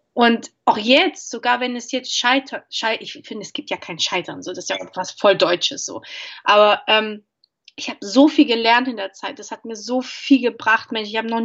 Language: German